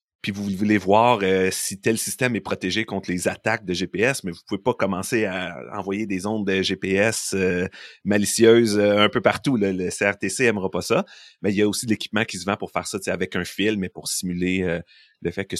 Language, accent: French, Canadian